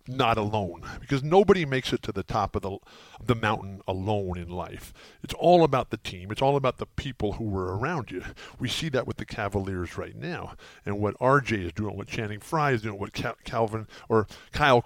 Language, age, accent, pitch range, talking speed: English, 50-69, American, 105-140 Hz, 210 wpm